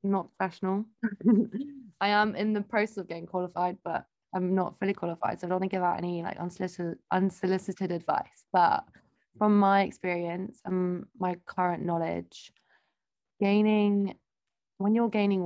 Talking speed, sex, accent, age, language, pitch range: 150 wpm, female, British, 20-39, English, 165-190 Hz